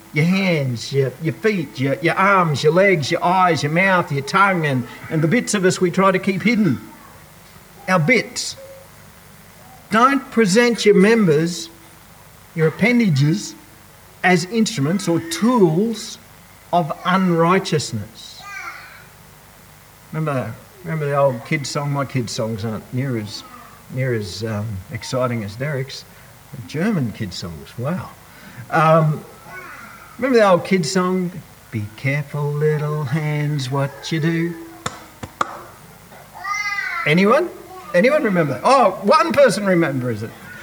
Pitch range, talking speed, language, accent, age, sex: 135-190 Hz, 125 wpm, English, Australian, 50-69, male